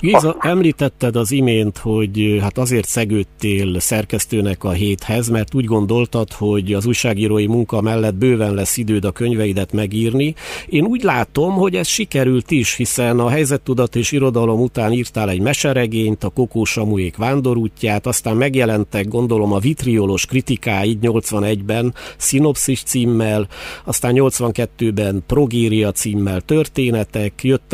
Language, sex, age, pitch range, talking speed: Hungarian, male, 50-69, 105-125 Hz, 130 wpm